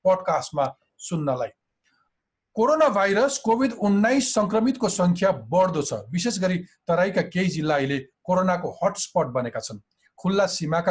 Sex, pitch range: male, 170-215 Hz